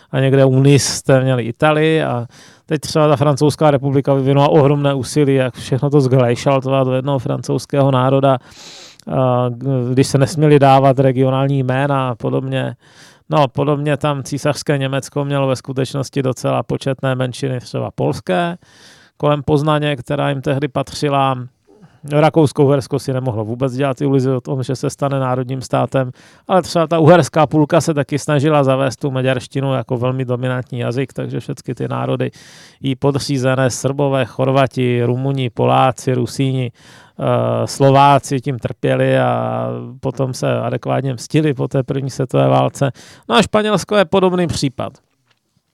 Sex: male